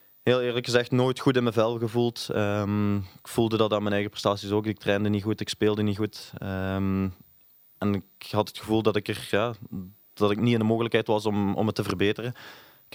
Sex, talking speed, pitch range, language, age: male, 205 wpm, 100-115 Hz, Dutch, 20-39